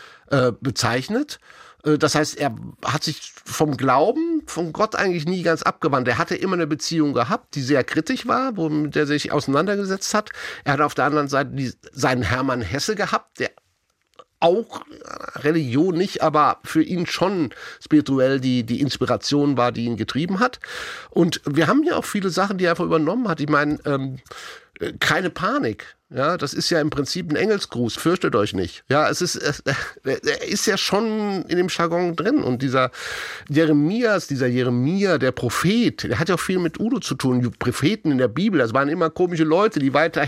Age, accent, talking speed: 50-69, German, 185 wpm